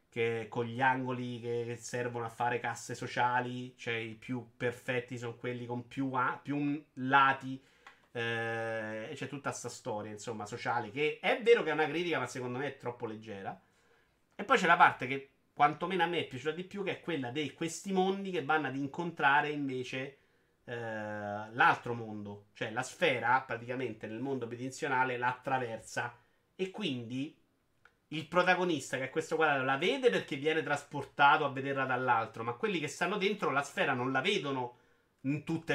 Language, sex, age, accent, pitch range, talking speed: Italian, male, 30-49, native, 120-150 Hz, 175 wpm